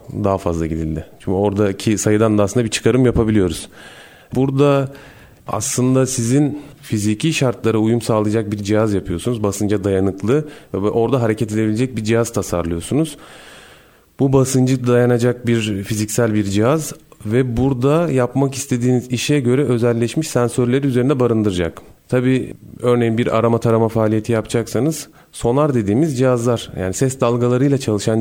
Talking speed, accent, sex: 130 wpm, native, male